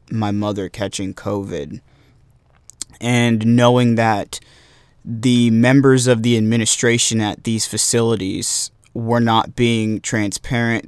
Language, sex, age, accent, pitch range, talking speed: English, male, 20-39, American, 110-120 Hz, 105 wpm